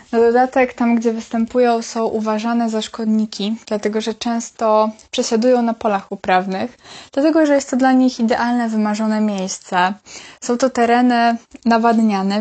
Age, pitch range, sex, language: 20-39, 205-235 Hz, female, Polish